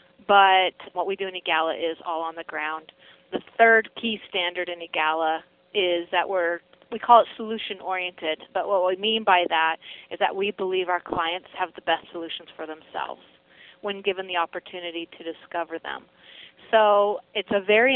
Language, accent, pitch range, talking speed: English, American, 170-210 Hz, 175 wpm